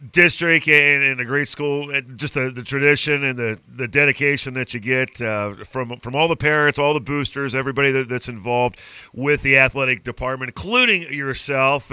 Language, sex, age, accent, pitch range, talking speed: English, male, 40-59, American, 130-155 Hz, 185 wpm